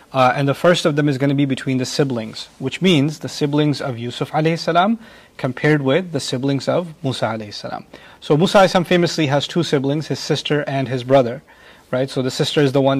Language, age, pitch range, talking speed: English, 30-49, 130-150 Hz, 210 wpm